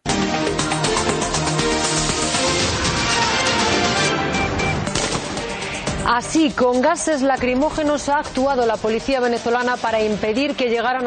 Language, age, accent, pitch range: Italian, 30-49, native, 110-150 Hz